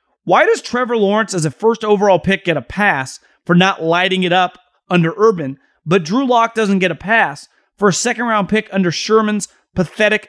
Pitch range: 185-255 Hz